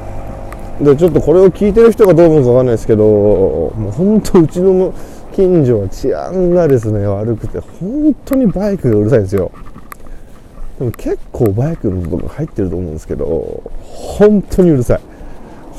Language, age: Japanese, 20-39